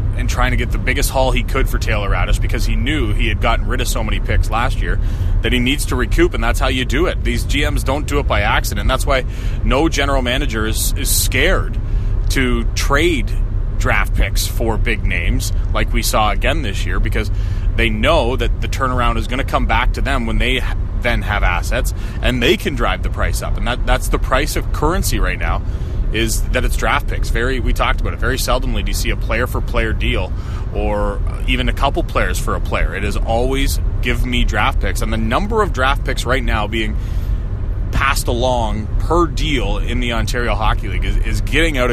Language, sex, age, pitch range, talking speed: English, male, 30-49, 95-115 Hz, 220 wpm